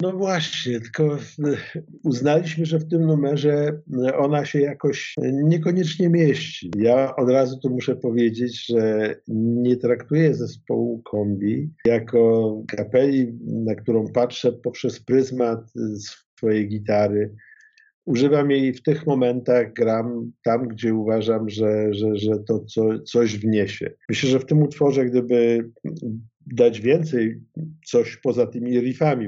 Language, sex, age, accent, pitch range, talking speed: Polish, male, 50-69, native, 105-130 Hz, 125 wpm